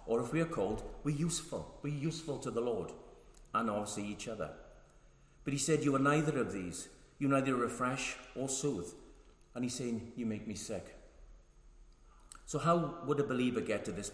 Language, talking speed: English, 185 wpm